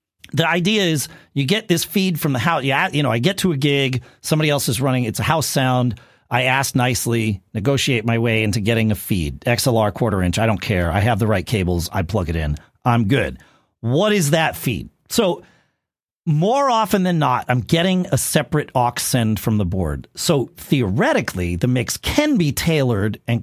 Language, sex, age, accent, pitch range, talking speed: English, male, 40-59, American, 105-150 Hz, 200 wpm